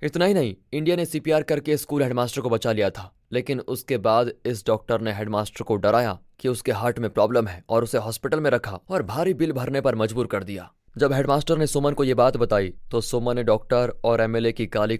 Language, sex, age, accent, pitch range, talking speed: Hindi, male, 20-39, native, 110-145 Hz, 230 wpm